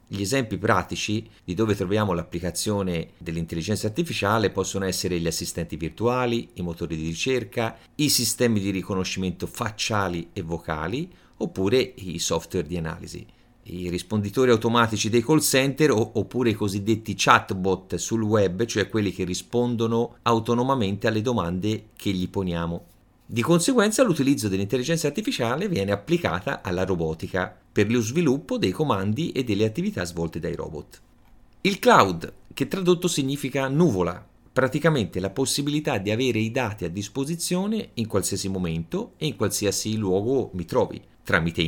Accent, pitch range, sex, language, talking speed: native, 90-130 Hz, male, Italian, 140 wpm